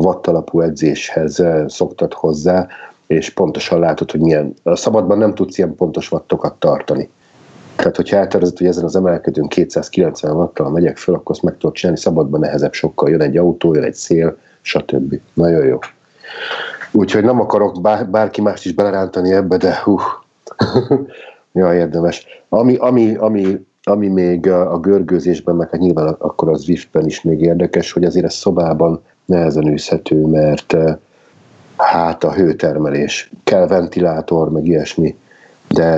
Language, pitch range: Hungarian, 80-95 Hz